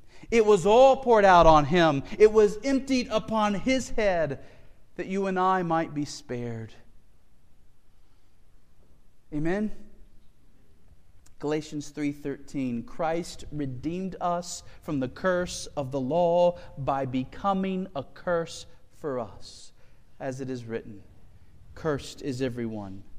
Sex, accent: male, American